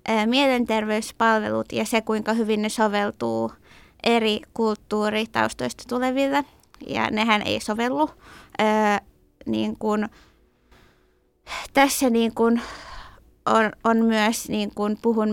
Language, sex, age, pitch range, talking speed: Finnish, female, 20-39, 210-245 Hz, 65 wpm